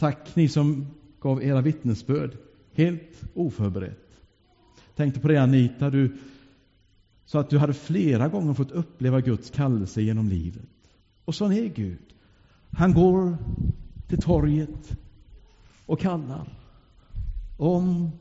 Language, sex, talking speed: English, male, 120 wpm